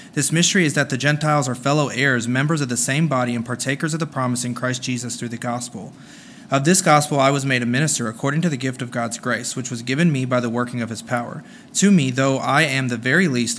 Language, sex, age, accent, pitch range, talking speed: English, male, 30-49, American, 125-150 Hz, 255 wpm